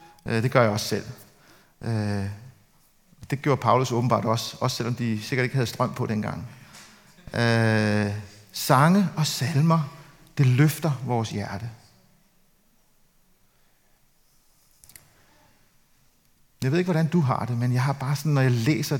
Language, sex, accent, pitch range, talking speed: Danish, male, native, 120-175 Hz, 130 wpm